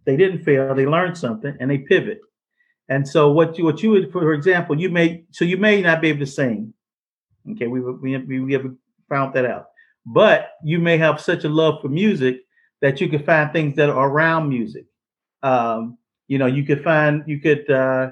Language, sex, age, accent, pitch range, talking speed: English, male, 50-69, American, 135-175 Hz, 205 wpm